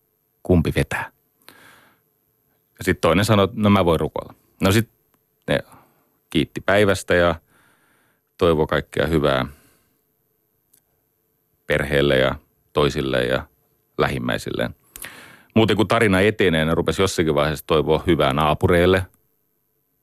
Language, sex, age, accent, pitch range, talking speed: Finnish, male, 40-59, native, 80-110 Hz, 110 wpm